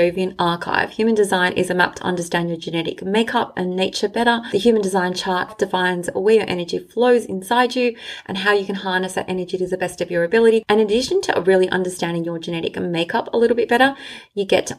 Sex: female